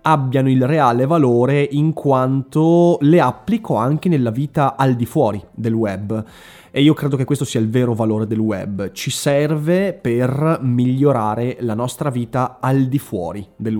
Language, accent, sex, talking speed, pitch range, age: Italian, native, male, 165 wpm, 120-160 Hz, 20-39